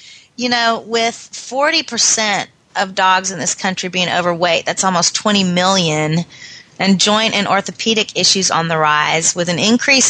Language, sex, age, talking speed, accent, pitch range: English, female, 30-49, 155 wpm, American, 175-215 Hz